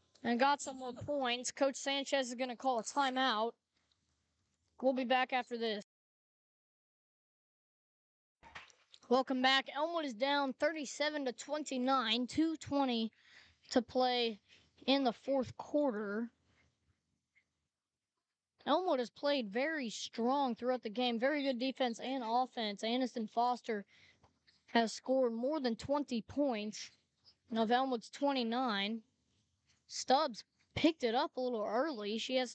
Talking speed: 120 wpm